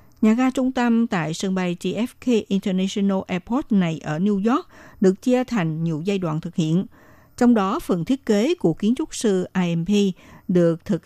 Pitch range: 170-220 Hz